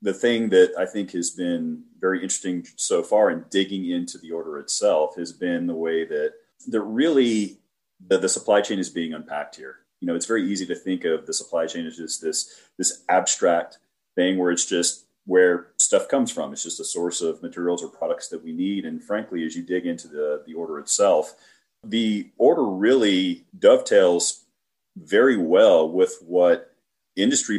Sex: male